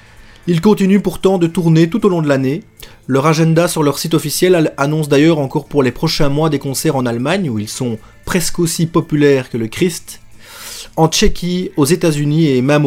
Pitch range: 135-180 Hz